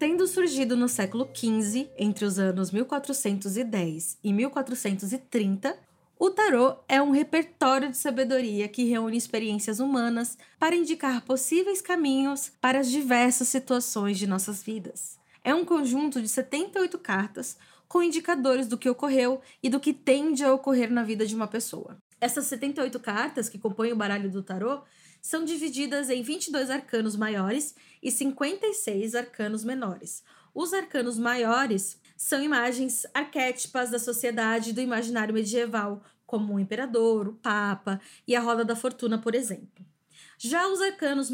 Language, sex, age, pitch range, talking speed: Portuguese, female, 20-39, 225-285 Hz, 145 wpm